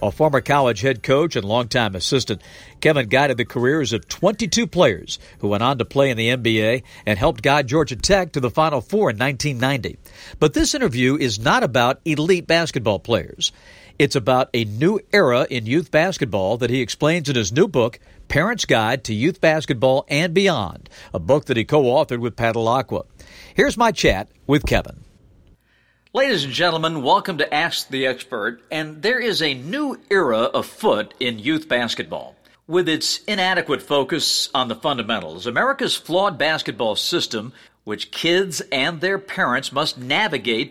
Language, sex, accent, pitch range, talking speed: English, male, American, 120-165 Hz, 165 wpm